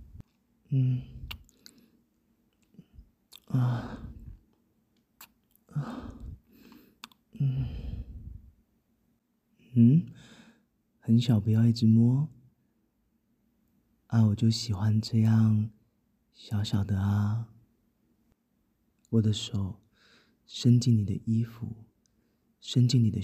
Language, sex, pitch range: Chinese, male, 110-125 Hz